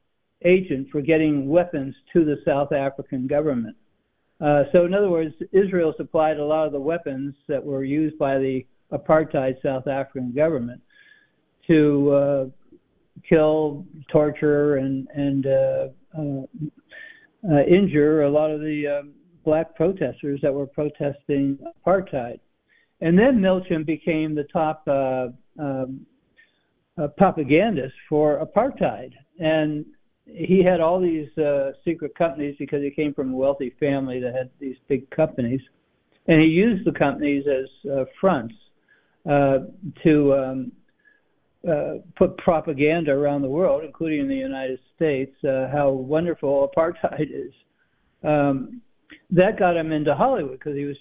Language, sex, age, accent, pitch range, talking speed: English, male, 60-79, American, 135-165 Hz, 140 wpm